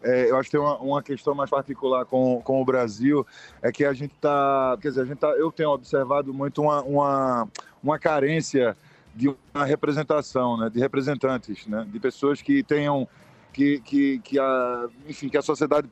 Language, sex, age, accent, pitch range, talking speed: Portuguese, male, 20-39, Brazilian, 135-155 Hz, 190 wpm